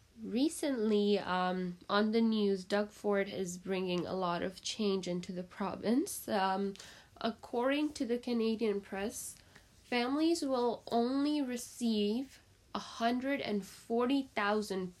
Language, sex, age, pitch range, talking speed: English, female, 10-29, 190-230 Hz, 110 wpm